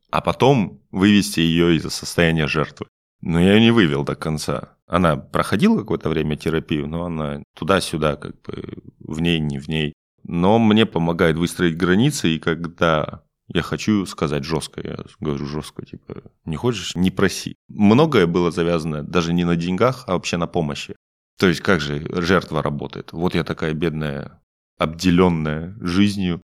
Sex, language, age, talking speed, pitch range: male, Russian, 20-39, 160 wpm, 75-90 Hz